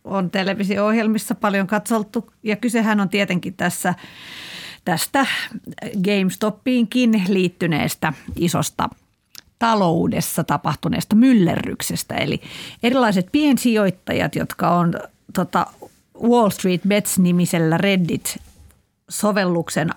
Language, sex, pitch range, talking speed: Finnish, female, 175-225 Hz, 80 wpm